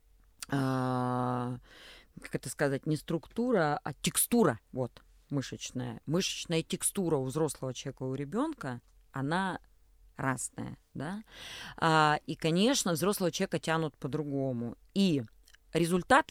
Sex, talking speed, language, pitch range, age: female, 110 wpm, Russian, 130-175 Hz, 30-49